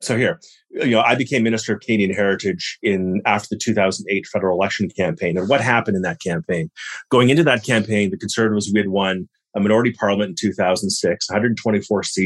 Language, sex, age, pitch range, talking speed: English, male, 30-49, 100-120 Hz, 180 wpm